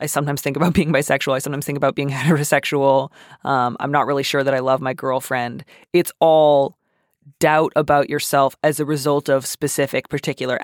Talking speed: 185 wpm